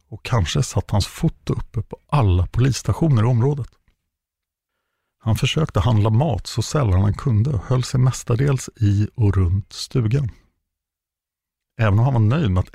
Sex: male